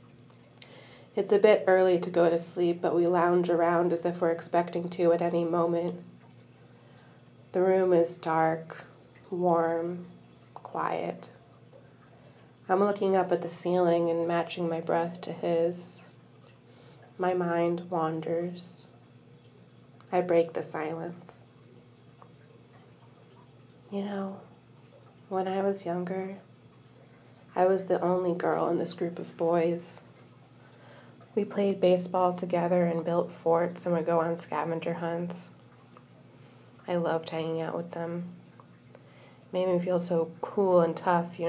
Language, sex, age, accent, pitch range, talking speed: English, female, 30-49, American, 165-180 Hz, 125 wpm